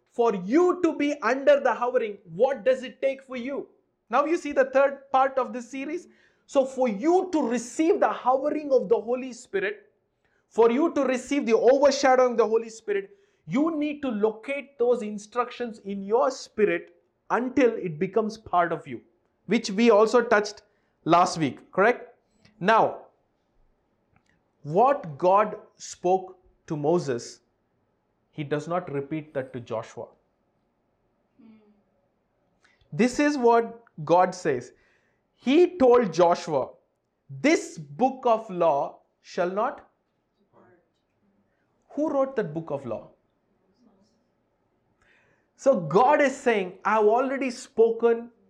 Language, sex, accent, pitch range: English, male, Indian, 200-270 Hz